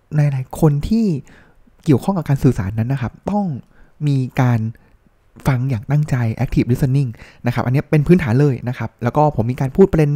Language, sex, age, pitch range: Thai, male, 20-39, 130-170 Hz